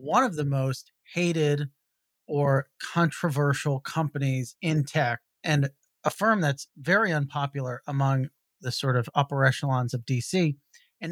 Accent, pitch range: American, 140-170 Hz